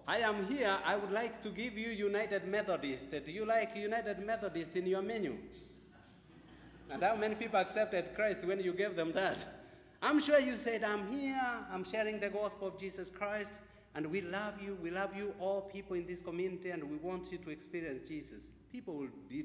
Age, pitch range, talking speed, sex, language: 60-79, 170-215 Hz, 200 wpm, male, English